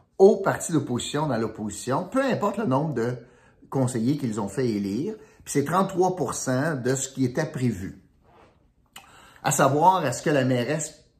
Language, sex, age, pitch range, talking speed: French, male, 50-69, 110-145 Hz, 155 wpm